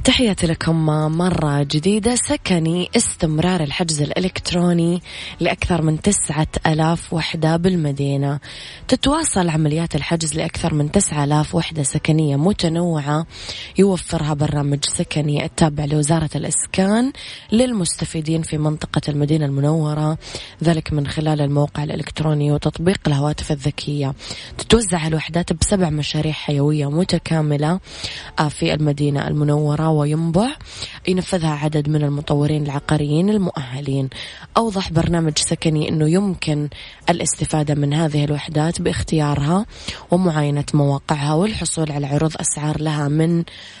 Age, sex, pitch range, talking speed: 20-39, female, 150-170 Hz, 105 wpm